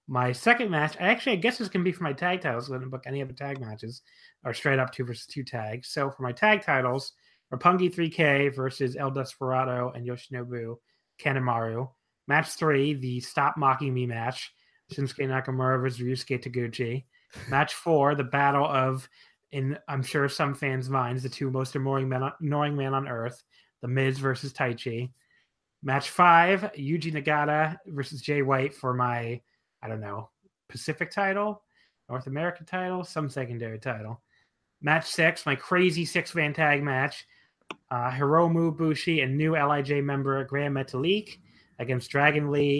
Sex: male